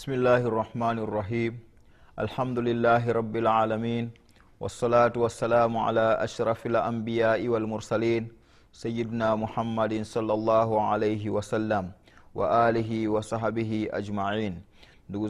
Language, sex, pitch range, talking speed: Swahili, male, 95-110 Hz, 95 wpm